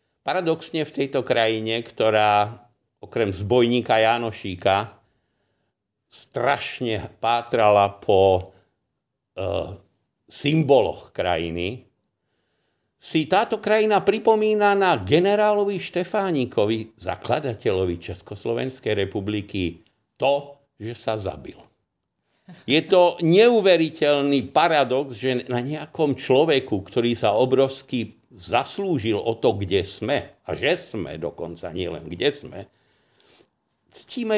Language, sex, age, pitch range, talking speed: Slovak, male, 60-79, 105-145 Hz, 90 wpm